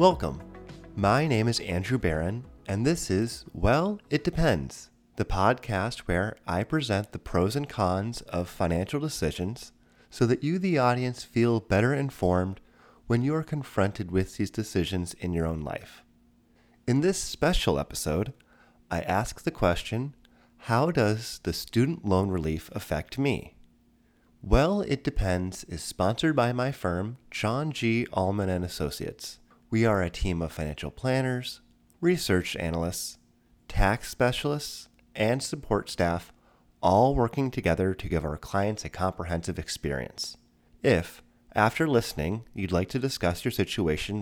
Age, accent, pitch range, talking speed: 30-49, American, 90-125 Hz, 140 wpm